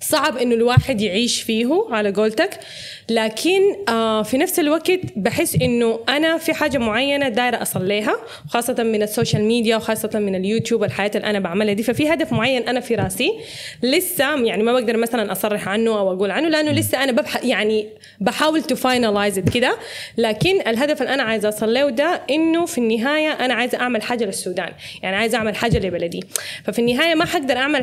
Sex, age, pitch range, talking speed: female, 20-39, 215-280 Hz, 175 wpm